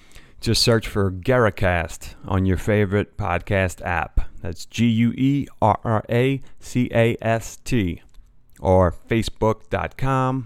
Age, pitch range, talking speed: 30-49, 90-115 Hz, 75 wpm